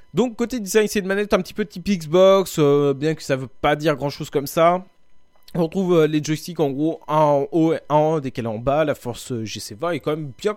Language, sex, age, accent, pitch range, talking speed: French, male, 20-39, French, 130-175 Hz, 260 wpm